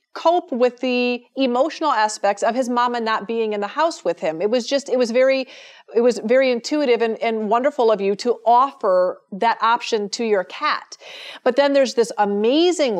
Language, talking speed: English, 195 wpm